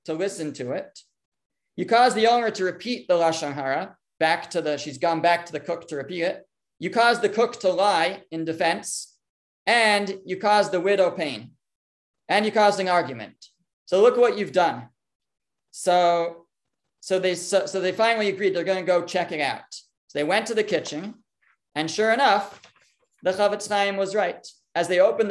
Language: English